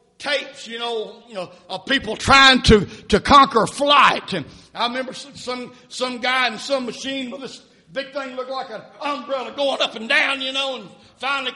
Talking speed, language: 190 wpm, English